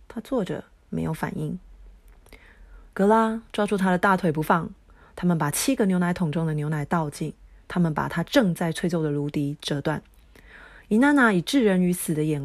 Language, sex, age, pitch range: Chinese, female, 30-49, 160-225 Hz